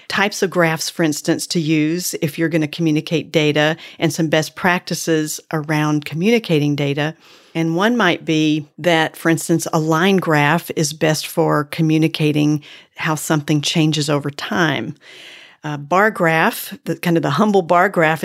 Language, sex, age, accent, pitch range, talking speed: English, female, 40-59, American, 160-185 Hz, 165 wpm